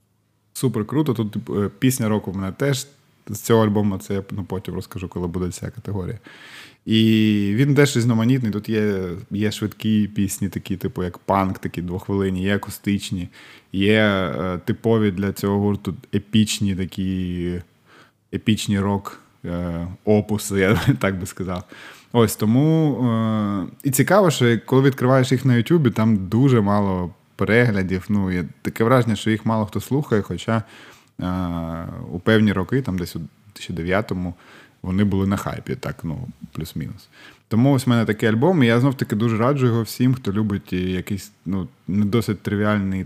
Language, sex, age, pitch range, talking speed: Ukrainian, male, 20-39, 95-115 Hz, 155 wpm